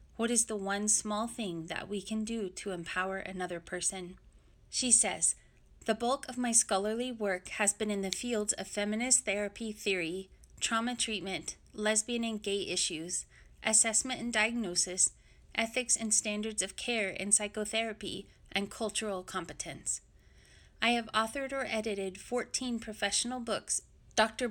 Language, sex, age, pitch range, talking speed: English, female, 30-49, 190-220 Hz, 145 wpm